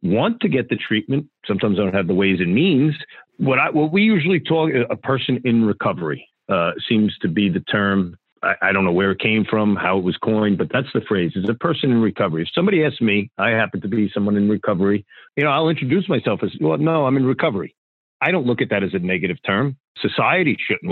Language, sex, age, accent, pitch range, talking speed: English, male, 50-69, American, 100-130 Hz, 240 wpm